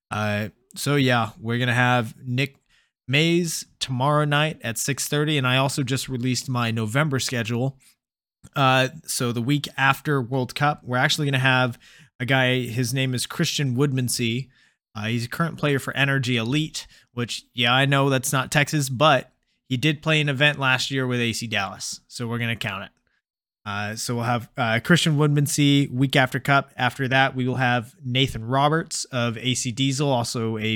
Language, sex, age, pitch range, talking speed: English, male, 20-39, 115-135 Hz, 185 wpm